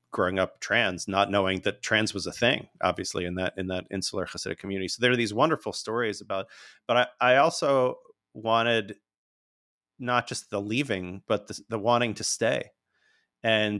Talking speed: 180 wpm